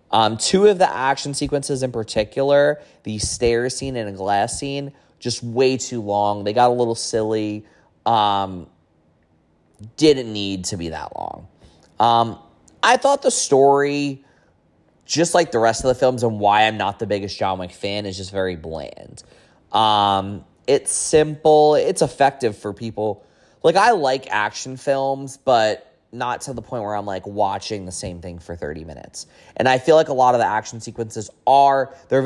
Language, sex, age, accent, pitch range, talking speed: English, male, 20-39, American, 100-135 Hz, 175 wpm